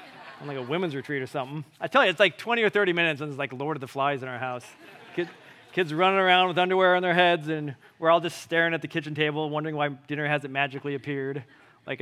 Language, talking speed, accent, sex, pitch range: English, 255 wpm, American, male, 140-200 Hz